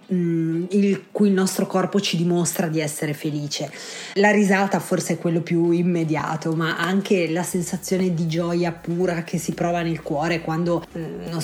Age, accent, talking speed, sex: 30-49, native, 165 wpm, female